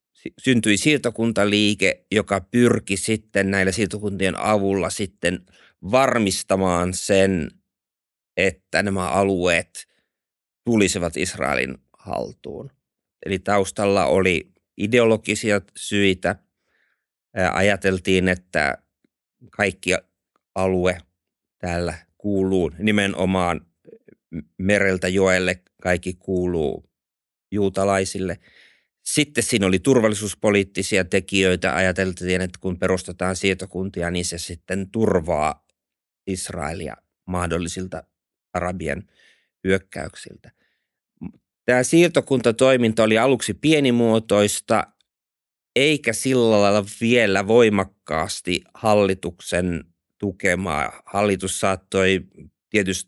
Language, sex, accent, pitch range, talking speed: Finnish, male, native, 90-105 Hz, 75 wpm